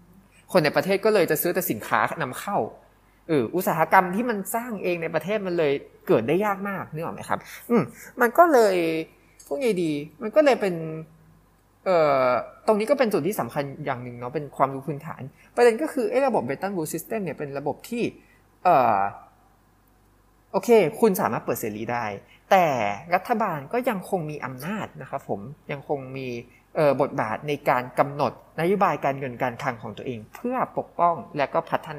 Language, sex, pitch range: Thai, male, 135-195 Hz